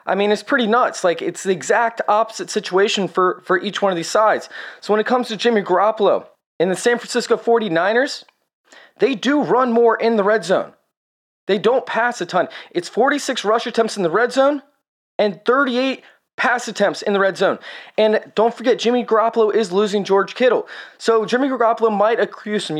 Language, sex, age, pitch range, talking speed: English, male, 20-39, 200-235 Hz, 195 wpm